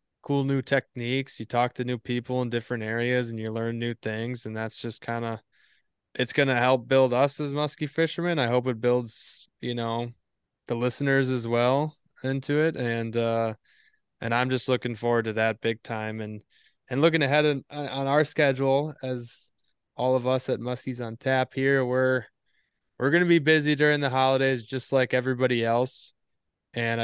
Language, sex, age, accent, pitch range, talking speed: English, male, 20-39, American, 115-135 Hz, 185 wpm